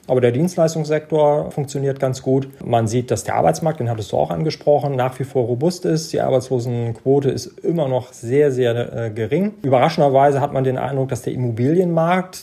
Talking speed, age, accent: 185 wpm, 40-59, German